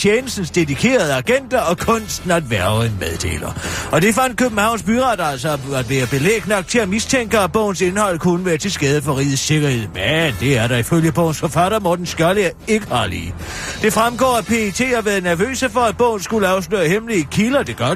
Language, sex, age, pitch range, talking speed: Danish, male, 40-59, 140-200 Hz, 195 wpm